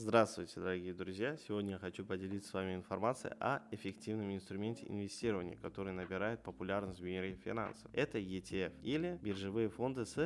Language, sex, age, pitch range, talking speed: Russian, male, 20-39, 105-130 Hz, 150 wpm